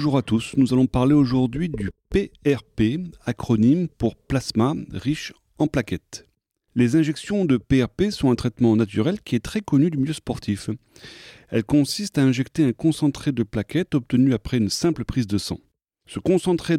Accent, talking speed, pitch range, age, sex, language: French, 170 wpm, 115-155 Hz, 40-59, male, French